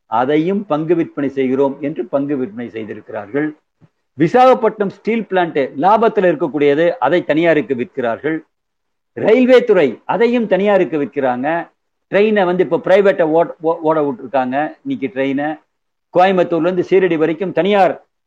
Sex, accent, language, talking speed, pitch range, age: male, native, Tamil, 90 wpm, 145-195 Hz, 50-69